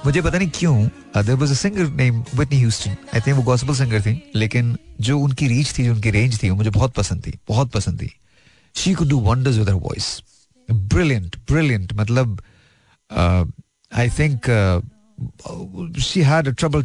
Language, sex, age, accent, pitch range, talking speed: Hindi, male, 40-59, native, 100-130 Hz, 55 wpm